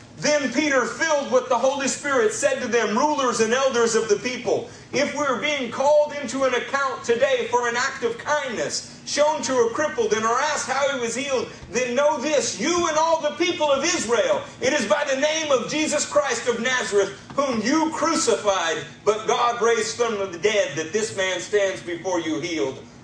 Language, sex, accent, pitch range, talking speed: English, male, American, 215-290 Hz, 200 wpm